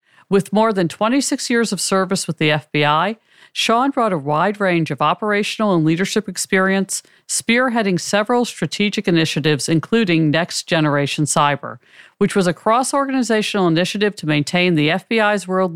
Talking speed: 145 wpm